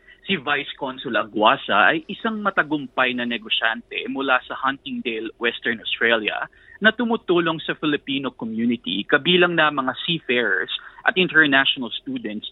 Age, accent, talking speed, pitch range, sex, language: 20-39, native, 125 wpm, 125-175 Hz, male, Filipino